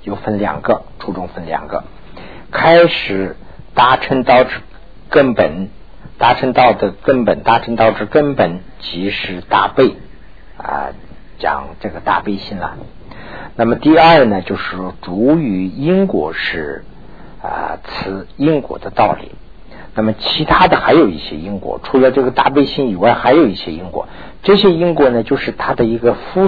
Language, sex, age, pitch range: Chinese, male, 50-69, 105-160 Hz